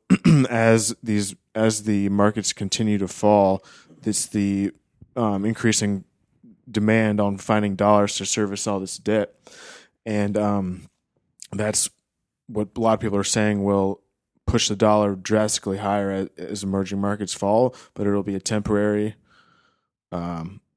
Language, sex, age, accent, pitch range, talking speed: English, male, 20-39, American, 95-105 Hz, 135 wpm